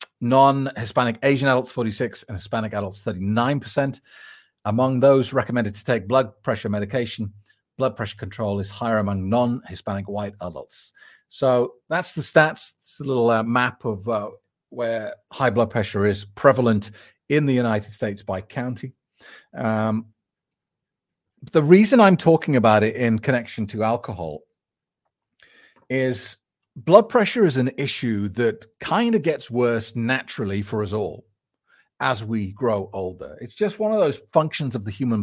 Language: English